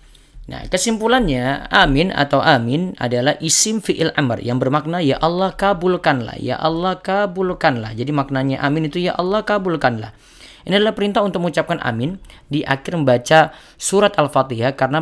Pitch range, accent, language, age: 125-160 Hz, native, Indonesian, 20-39